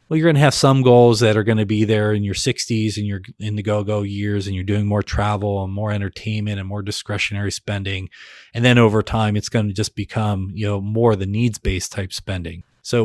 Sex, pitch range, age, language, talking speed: male, 100-115 Hz, 30-49, English, 240 wpm